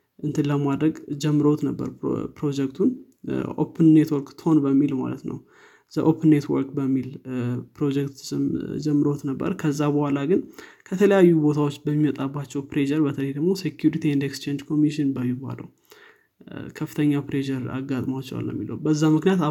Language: Amharic